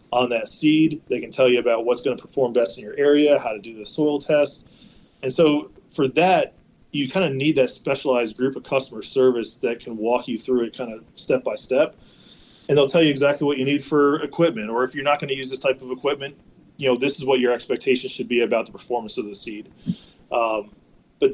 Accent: American